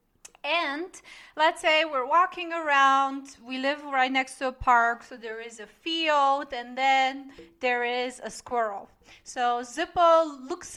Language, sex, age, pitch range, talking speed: English, female, 30-49, 250-310 Hz, 150 wpm